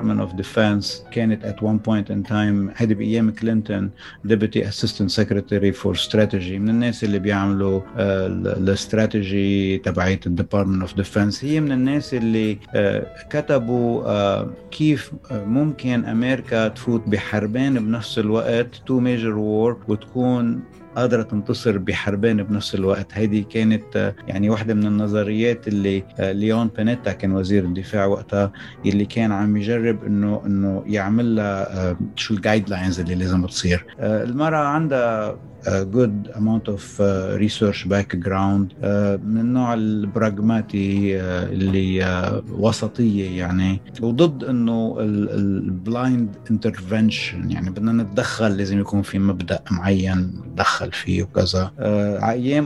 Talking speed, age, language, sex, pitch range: 115 wpm, 50-69, English, male, 100-115 Hz